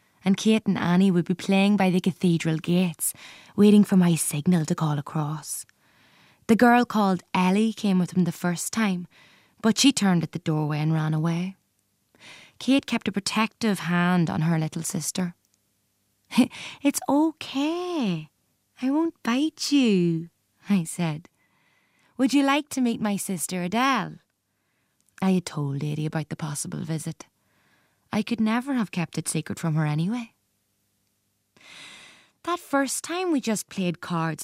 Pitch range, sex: 160-220 Hz, female